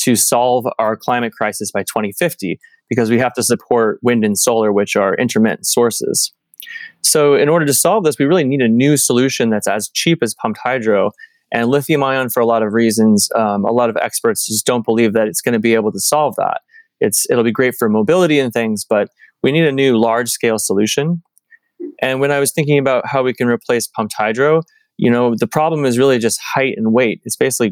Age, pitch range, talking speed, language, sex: 20-39, 115-145 Hz, 215 wpm, English, male